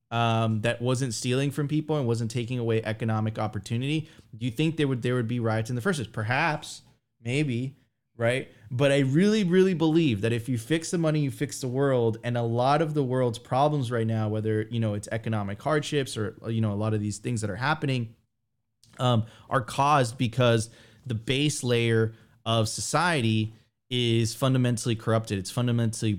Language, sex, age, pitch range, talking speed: English, male, 20-39, 110-135 Hz, 190 wpm